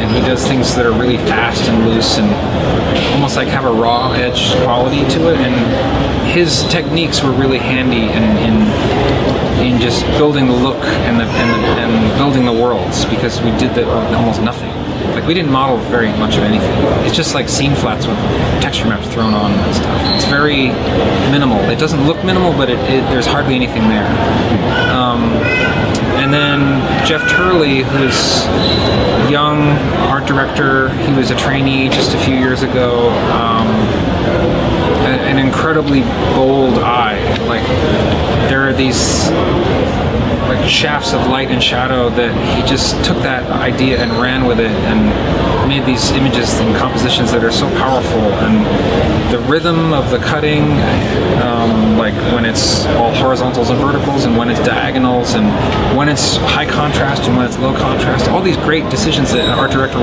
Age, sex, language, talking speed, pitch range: 30-49, male, English, 170 wpm, 115-135 Hz